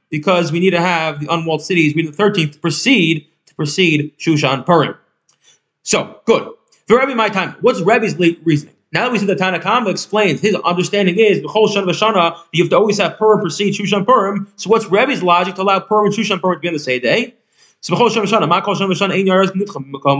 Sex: male